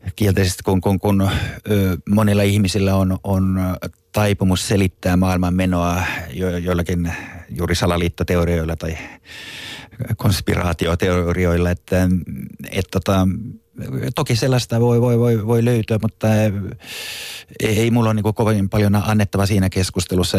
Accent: native